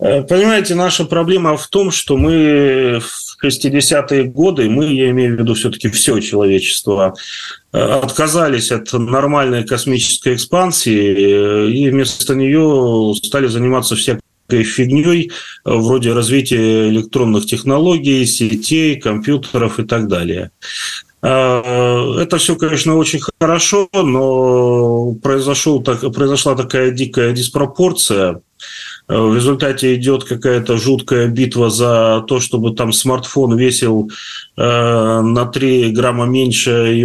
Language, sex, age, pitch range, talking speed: Russian, male, 30-49, 115-140 Hz, 110 wpm